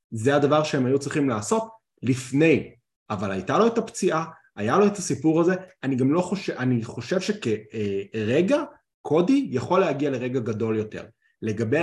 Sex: male